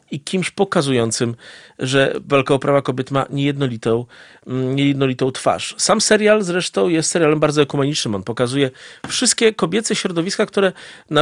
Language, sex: Polish, male